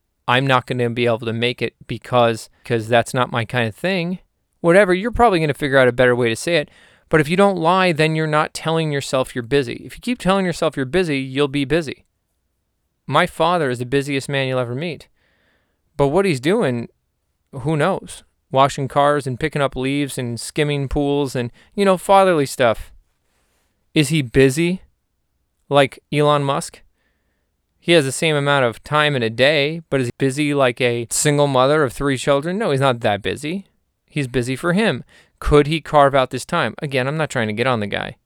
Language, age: English, 20-39